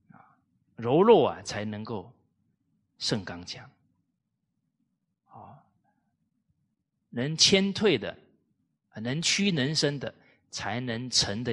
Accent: native